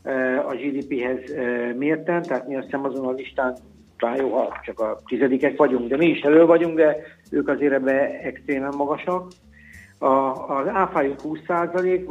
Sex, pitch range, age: male, 135-155 Hz, 50-69